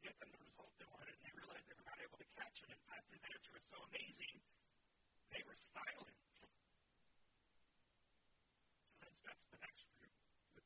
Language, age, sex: English, 50-69, male